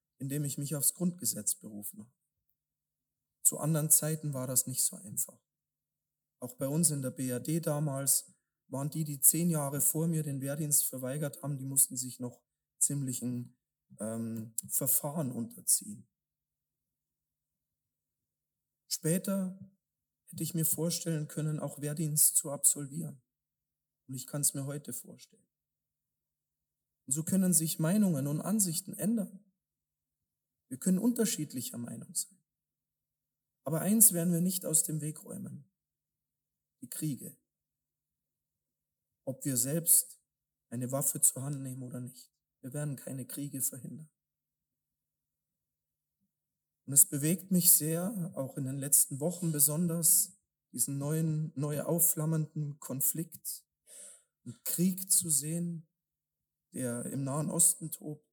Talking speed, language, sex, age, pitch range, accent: 125 wpm, German, male, 40-59, 135-165 Hz, German